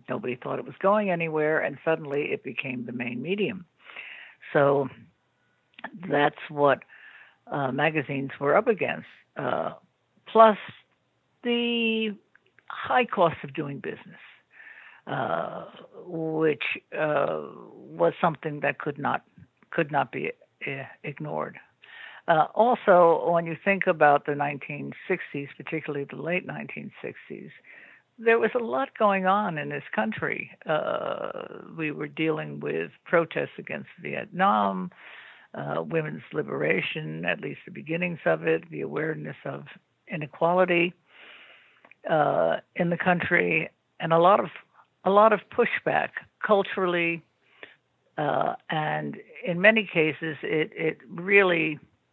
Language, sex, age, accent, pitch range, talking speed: English, female, 60-79, American, 145-195 Hz, 120 wpm